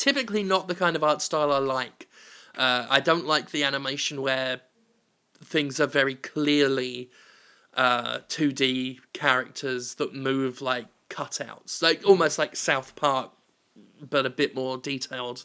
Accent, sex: British, male